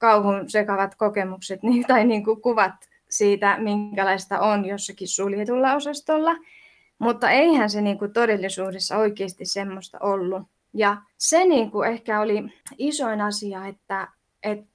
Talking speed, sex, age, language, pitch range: 105 wpm, female, 20-39, Finnish, 190-230 Hz